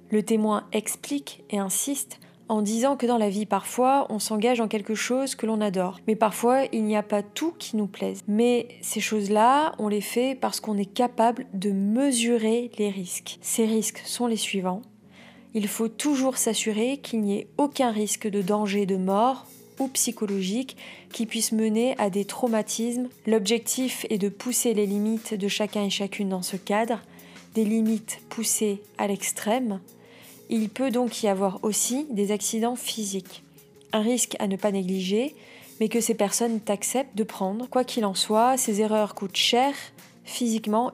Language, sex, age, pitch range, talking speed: French, female, 20-39, 205-240 Hz, 175 wpm